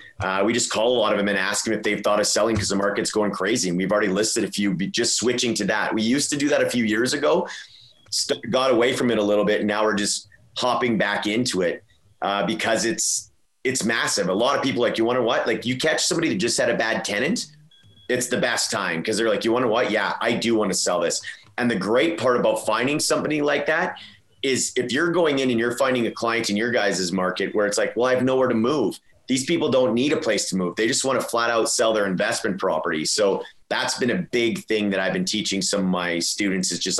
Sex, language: male, English